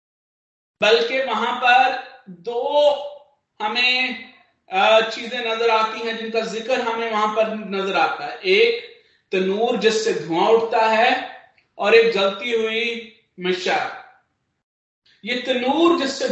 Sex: male